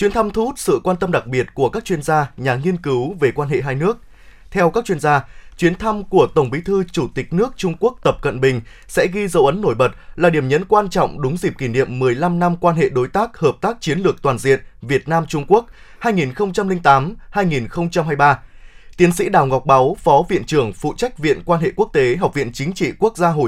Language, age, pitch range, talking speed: Vietnamese, 20-39, 140-205 Hz, 235 wpm